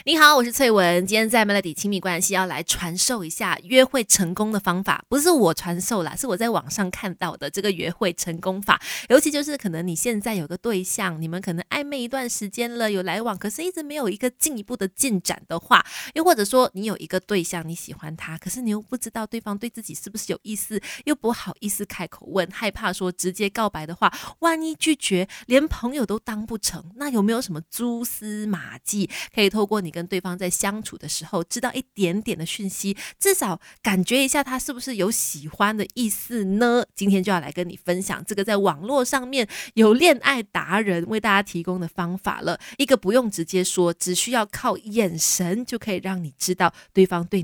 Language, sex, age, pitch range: Chinese, female, 20-39, 180-240 Hz